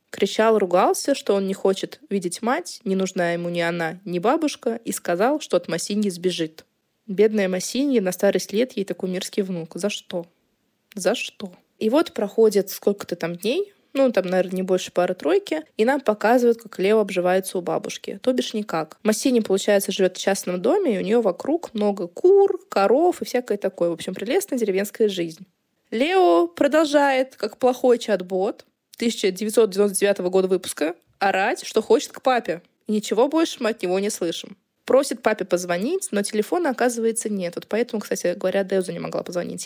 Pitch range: 190-250 Hz